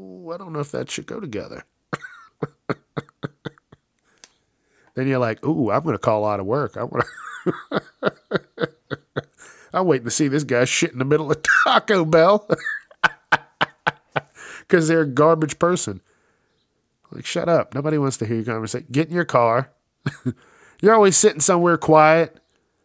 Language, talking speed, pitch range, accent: English, 145 wpm, 105-155 Hz, American